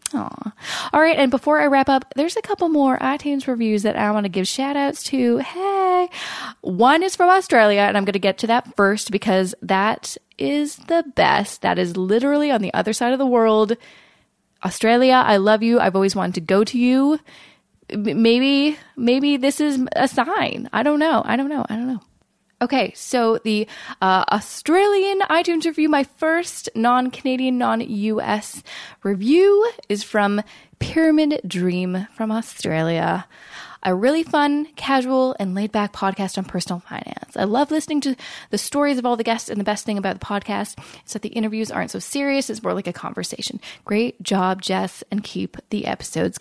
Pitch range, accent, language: 205-280 Hz, American, English